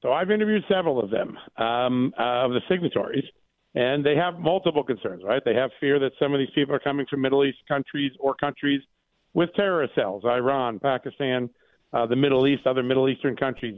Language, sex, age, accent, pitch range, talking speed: English, male, 50-69, American, 135-160 Hz, 195 wpm